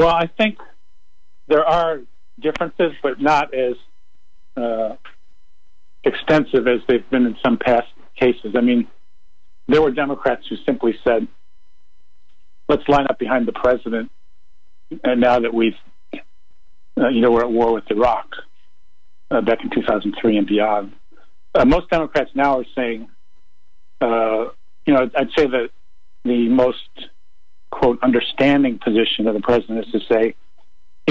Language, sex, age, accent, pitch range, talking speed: English, male, 50-69, American, 80-125 Hz, 145 wpm